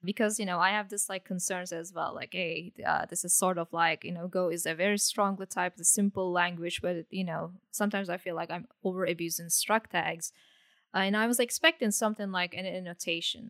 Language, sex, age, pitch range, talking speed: English, female, 20-39, 180-220 Hz, 220 wpm